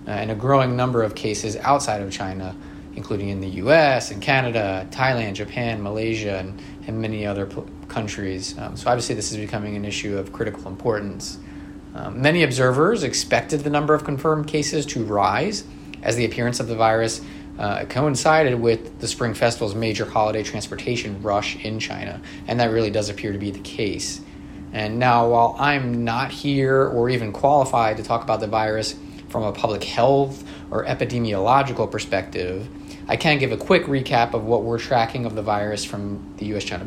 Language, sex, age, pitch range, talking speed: English, male, 30-49, 100-135 Hz, 175 wpm